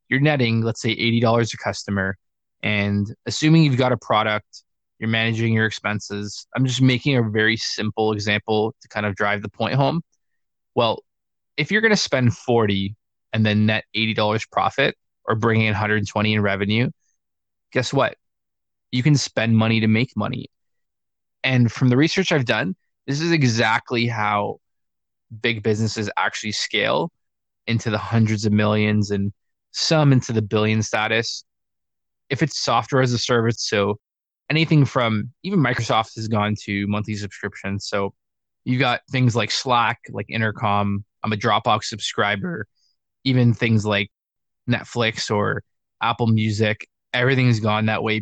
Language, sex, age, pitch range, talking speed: English, male, 20-39, 105-125 Hz, 150 wpm